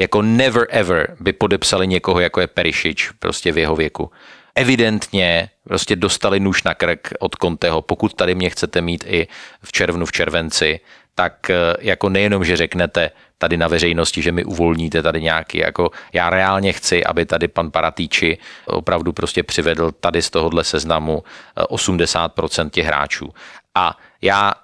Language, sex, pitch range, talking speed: Slovak, male, 85-100 Hz, 155 wpm